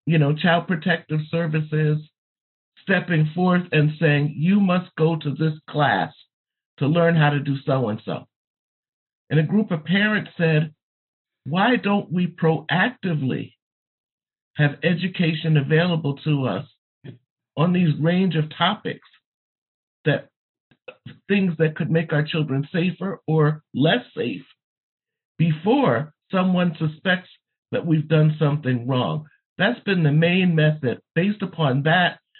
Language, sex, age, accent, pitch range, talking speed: English, male, 50-69, American, 150-175 Hz, 125 wpm